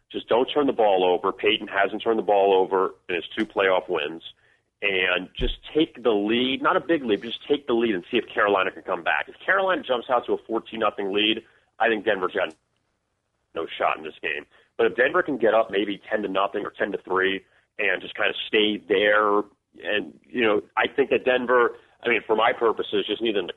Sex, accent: male, American